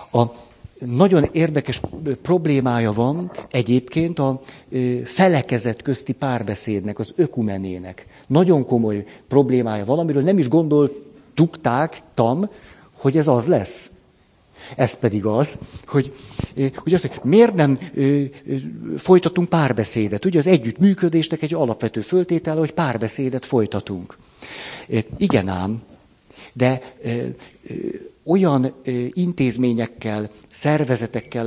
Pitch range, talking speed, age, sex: 115-155 Hz, 100 wpm, 50-69, male